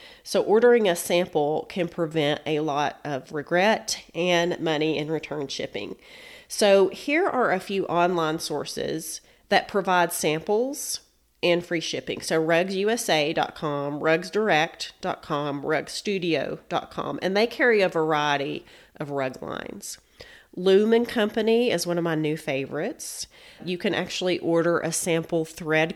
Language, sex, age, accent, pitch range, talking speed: English, female, 30-49, American, 155-185 Hz, 130 wpm